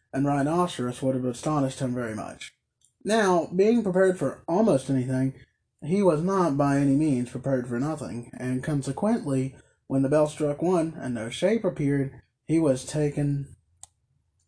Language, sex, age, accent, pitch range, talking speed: English, male, 20-39, American, 125-160 Hz, 155 wpm